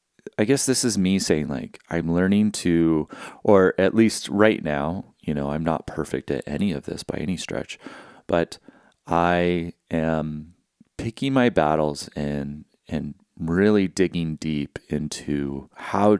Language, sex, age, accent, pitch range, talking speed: English, male, 30-49, American, 75-100 Hz, 150 wpm